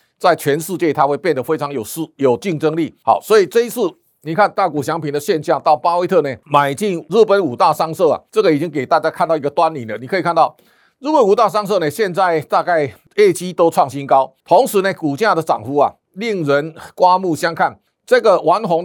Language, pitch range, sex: Chinese, 145-185 Hz, male